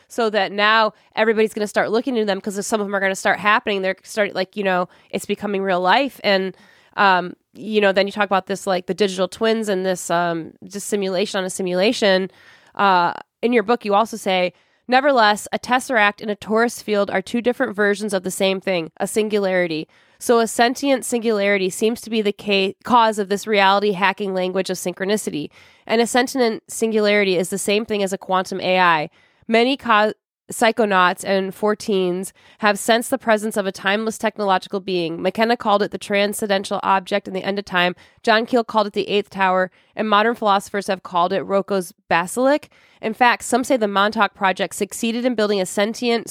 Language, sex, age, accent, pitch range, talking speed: English, female, 20-39, American, 190-220 Hz, 200 wpm